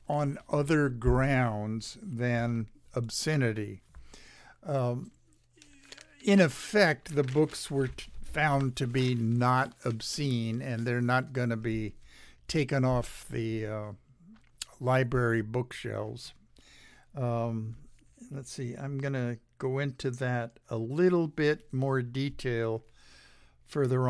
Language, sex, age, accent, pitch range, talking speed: English, male, 60-79, American, 120-150 Hz, 110 wpm